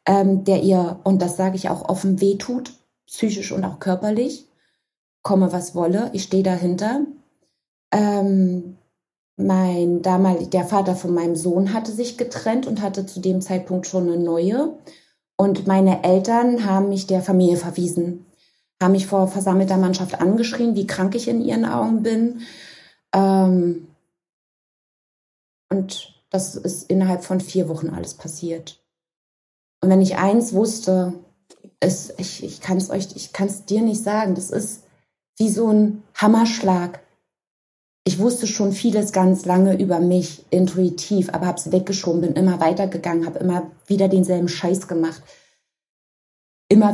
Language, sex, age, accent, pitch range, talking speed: German, female, 20-39, German, 175-200 Hz, 145 wpm